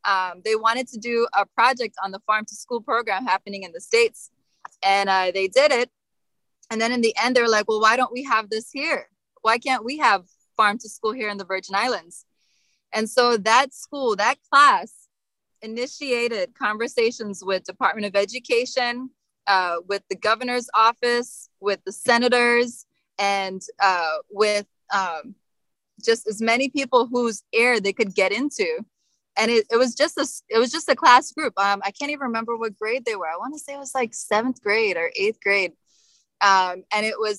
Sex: female